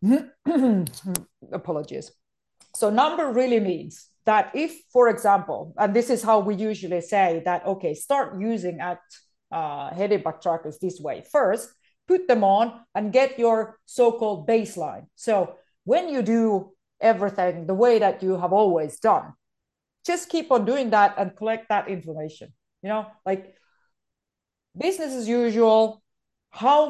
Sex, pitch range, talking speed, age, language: female, 180-235 Hz, 145 wpm, 40-59, German